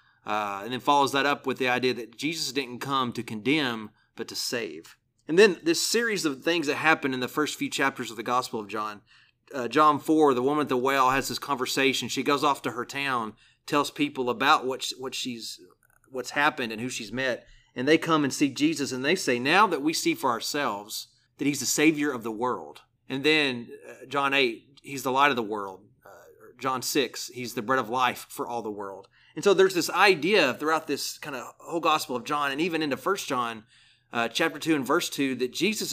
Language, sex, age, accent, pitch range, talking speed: English, male, 30-49, American, 125-155 Hz, 230 wpm